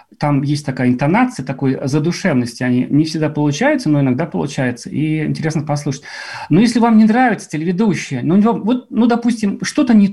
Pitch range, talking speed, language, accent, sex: 150-220 Hz, 165 wpm, Russian, native, male